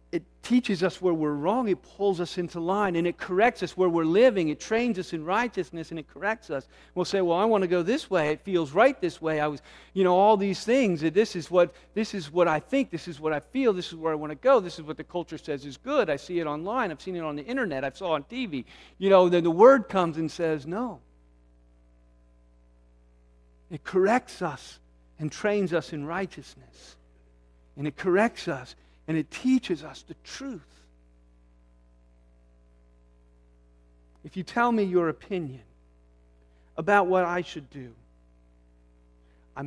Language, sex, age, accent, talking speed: English, male, 50-69, American, 195 wpm